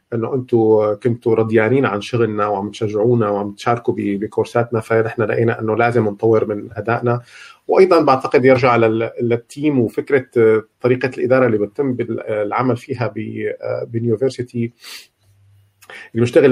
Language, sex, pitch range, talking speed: Arabic, male, 115-135 Hz, 110 wpm